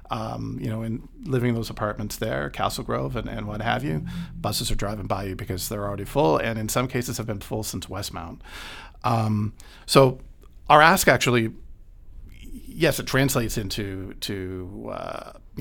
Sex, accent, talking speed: male, American, 175 wpm